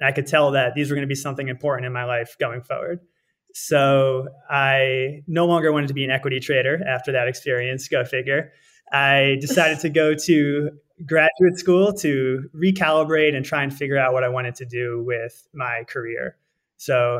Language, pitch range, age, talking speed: English, 130-155 Hz, 20-39, 190 wpm